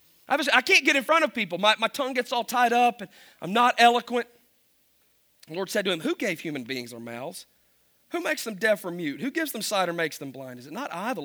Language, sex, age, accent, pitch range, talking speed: English, male, 40-59, American, 210-255 Hz, 255 wpm